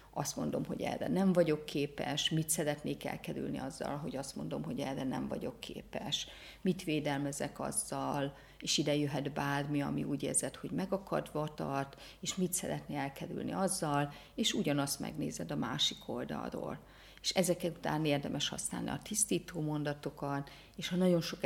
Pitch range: 145-180 Hz